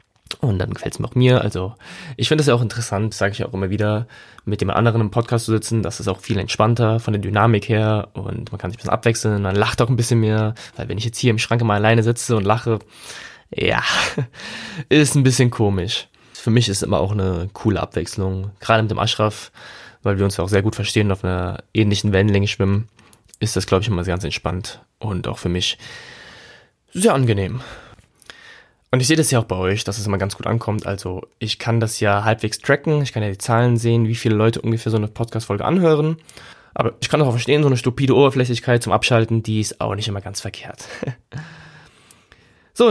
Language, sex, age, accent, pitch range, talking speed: German, male, 20-39, German, 105-125 Hz, 225 wpm